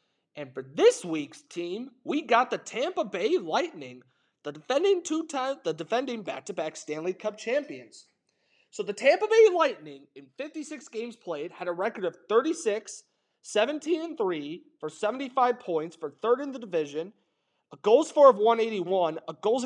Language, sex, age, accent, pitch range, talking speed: English, male, 30-49, American, 155-245 Hz, 155 wpm